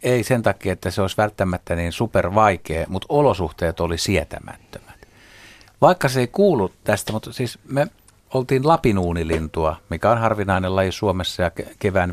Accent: native